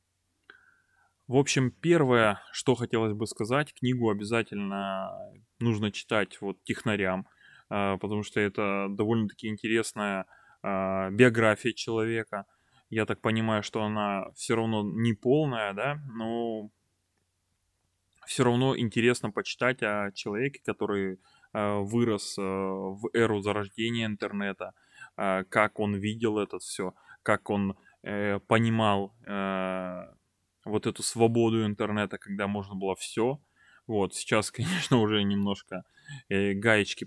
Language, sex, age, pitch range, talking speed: Russian, male, 20-39, 100-115 Hz, 115 wpm